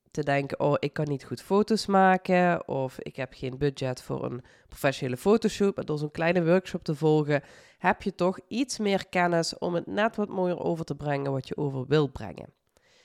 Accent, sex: Dutch, female